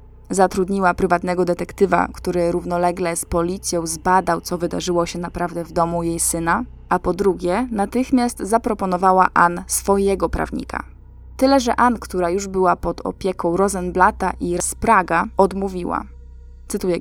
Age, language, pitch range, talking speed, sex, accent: 20-39, Polish, 170-195 Hz, 135 wpm, female, native